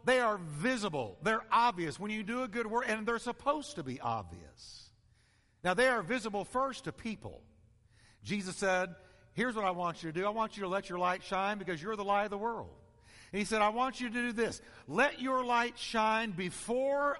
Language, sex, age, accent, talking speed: English, male, 50-69, American, 215 wpm